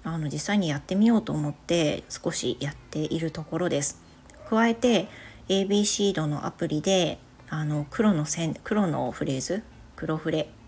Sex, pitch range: female, 155-195 Hz